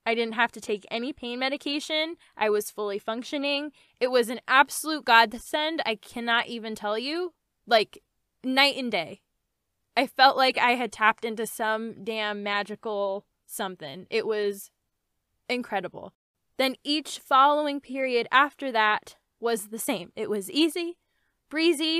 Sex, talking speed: female, 145 wpm